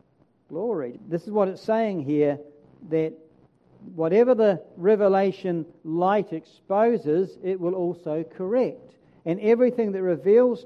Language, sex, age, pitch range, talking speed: English, male, 60-79, 160-210 Hz, 115 wpm